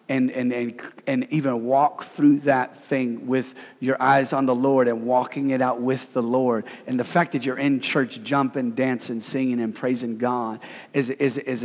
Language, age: English, 40-59